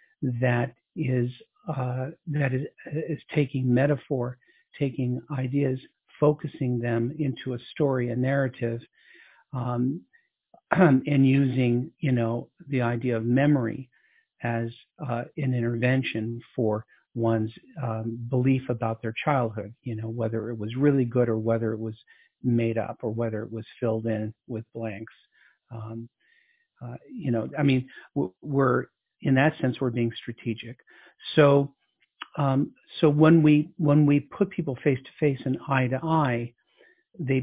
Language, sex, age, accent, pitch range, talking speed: English, male, 50-69, American, 115-145 Hz, 140 wpm